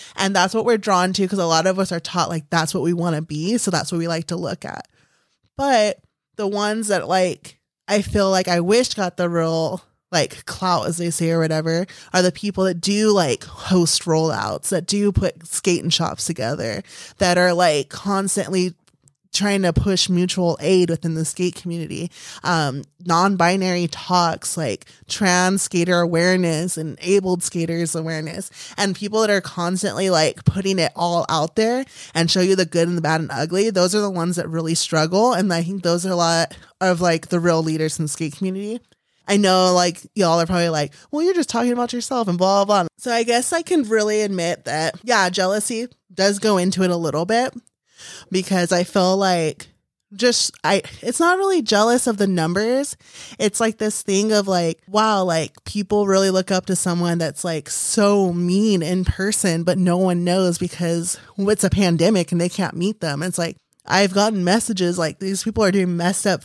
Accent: American